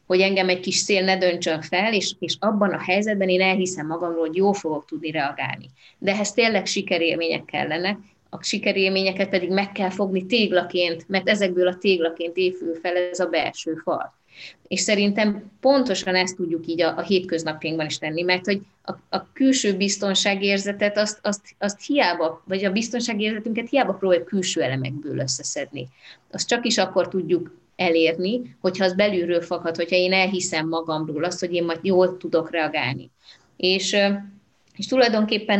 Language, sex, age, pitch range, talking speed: Hungarian, female, 20-39, 165-200 Hz, 160 wpm